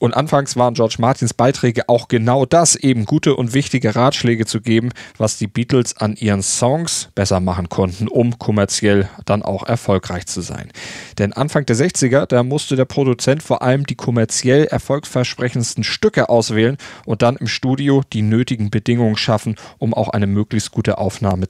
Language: German